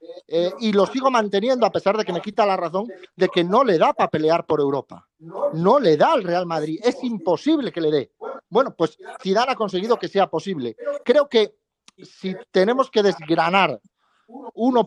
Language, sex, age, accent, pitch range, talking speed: Spanish, male, 40-59, Spanish, 180-230 Hz, 195 wpm